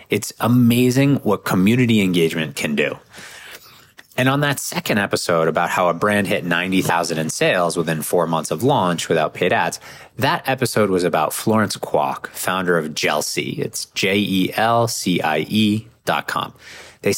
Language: English